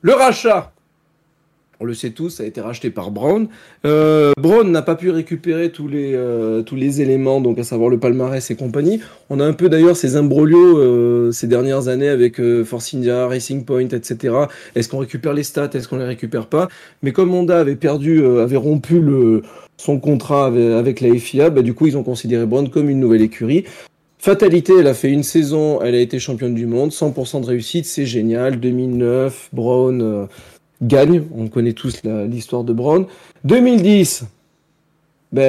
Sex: male